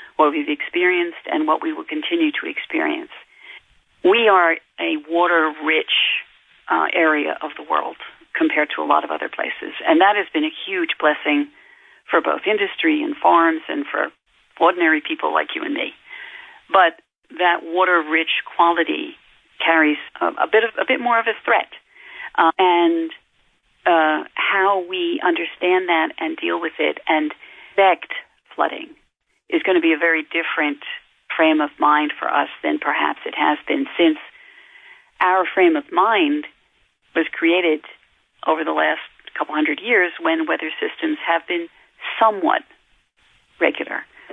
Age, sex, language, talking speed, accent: 40-59, female, English, 145 wpm, American